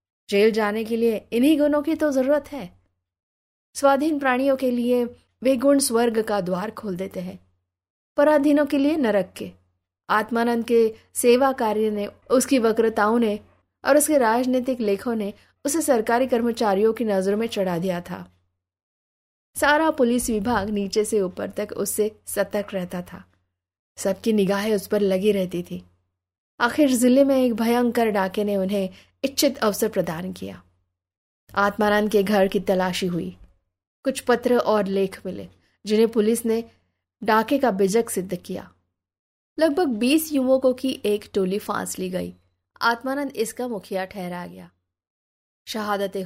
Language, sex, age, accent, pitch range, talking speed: Hindi, female, 20-39, native, 180-245 Hz, 145 wpm